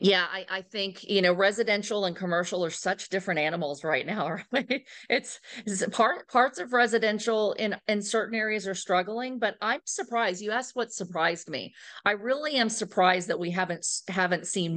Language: English